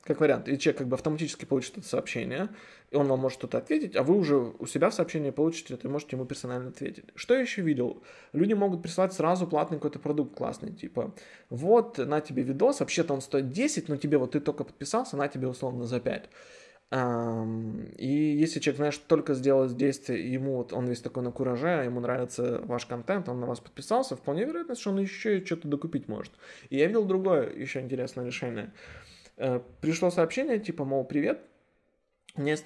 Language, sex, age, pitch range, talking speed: Russian, male, 20-39, 130-170 Hz, 195 wpm